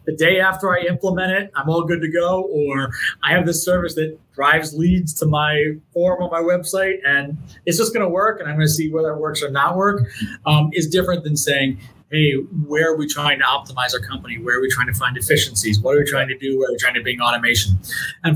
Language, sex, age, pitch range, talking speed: English, male, 30-49, 135-170 Hz, 250 wpm